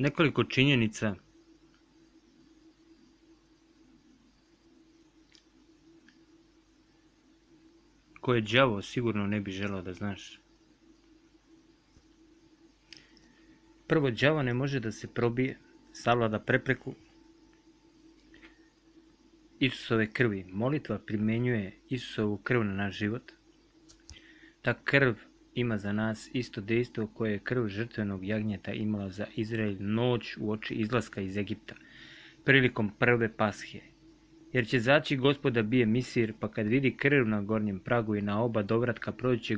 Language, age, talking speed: Croatian, 30-49, 110 wpm